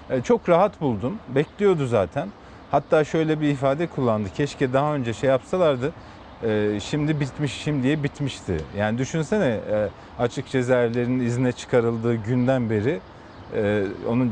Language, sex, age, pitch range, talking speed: Turkish, male, 40-59, 110-145 Hz, 115 wpm